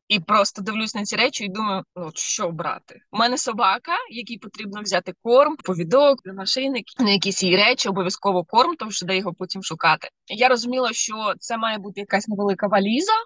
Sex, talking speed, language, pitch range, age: female, 185 wpm, Ukrainian, 190-240 Hz, 20-39